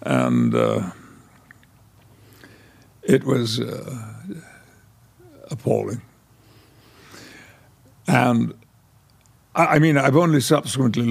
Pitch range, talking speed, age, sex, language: 115-135 Hz, 70 wpm, 60-79, male, English